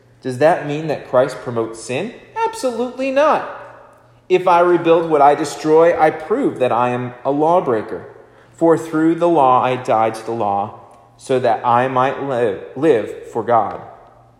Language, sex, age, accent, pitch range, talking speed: English, male, 40-59, American, 115-180 Hz, 165 wpm